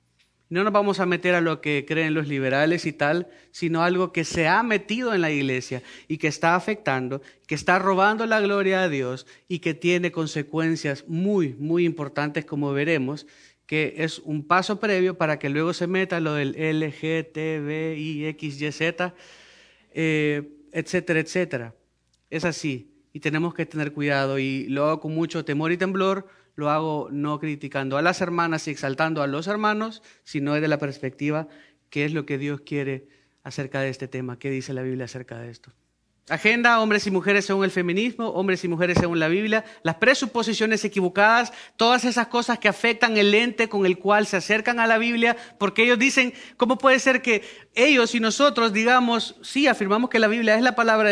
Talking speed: 185 wpm